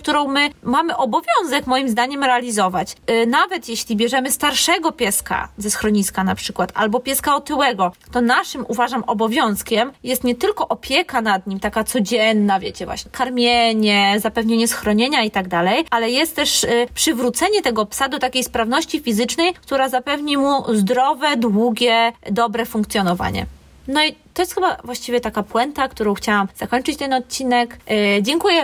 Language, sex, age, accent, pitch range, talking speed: Polish, female, 20-39, native, 210-260 Hz, 145 wpm